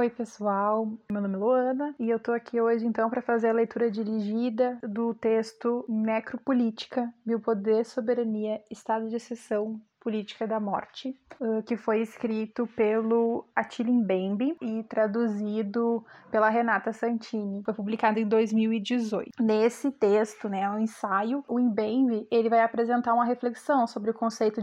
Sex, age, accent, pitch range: female, 20-39, Brazilian, 220-245 Hz